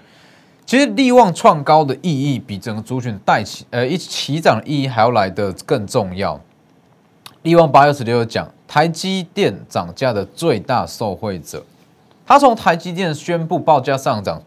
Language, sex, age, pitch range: Chinese, male, 20-39, 120-165 Hz